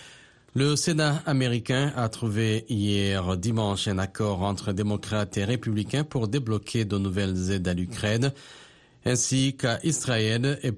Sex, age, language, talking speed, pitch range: male, 40-59, French, 135 wpm, 100-125 Hz